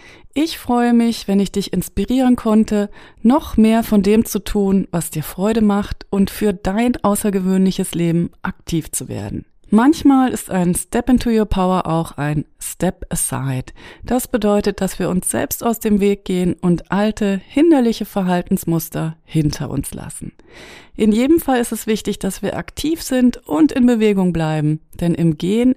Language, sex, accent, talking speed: German, female, German, 165 wpm